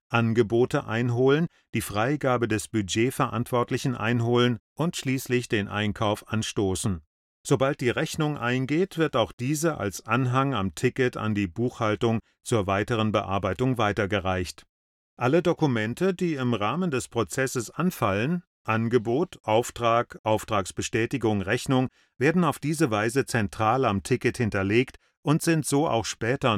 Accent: German